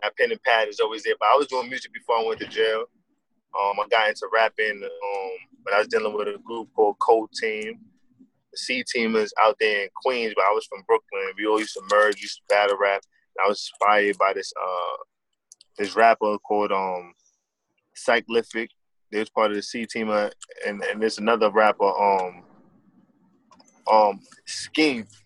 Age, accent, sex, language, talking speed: 20-39, American, male, English, 195 wpm